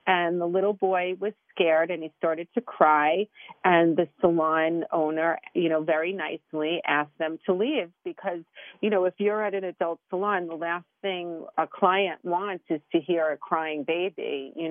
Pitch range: 170-210 Hz